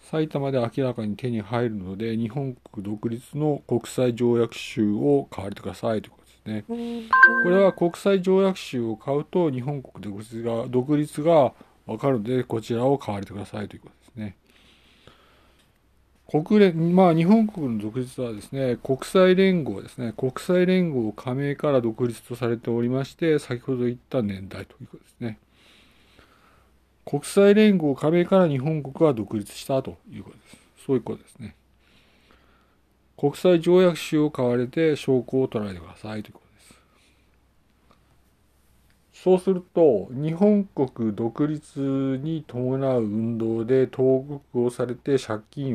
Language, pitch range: Japanese, 110-150 Hz